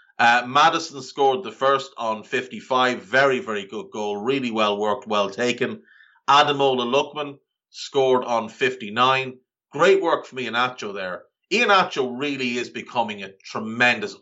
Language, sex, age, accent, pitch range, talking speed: English, male, 30-49, Irish, 125-160 Hz, 135 wpm